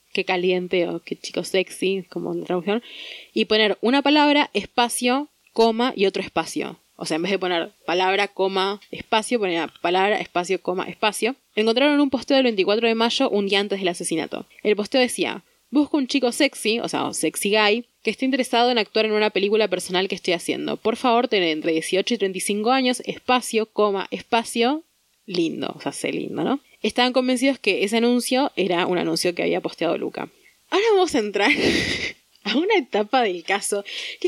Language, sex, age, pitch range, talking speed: Spanish, female, 20-39, 190-255 Hz, 185 wpm